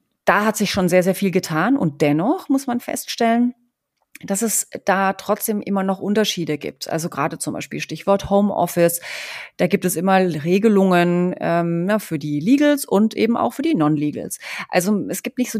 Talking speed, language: 180 wpm, German